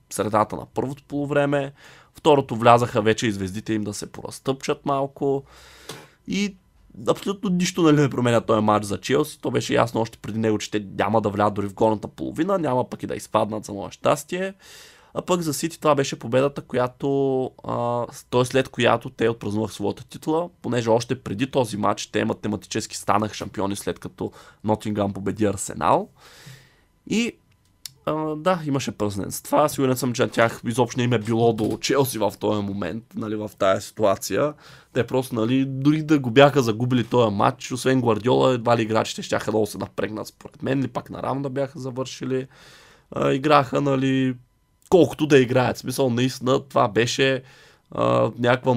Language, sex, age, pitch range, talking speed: Bulgarian, male, 20-39, 110-140 Hz, 175 wpm